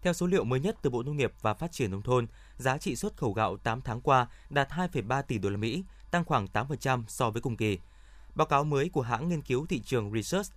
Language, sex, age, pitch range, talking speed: Vietnamese, male, 20-39, 115-160 Hz, 255 wpm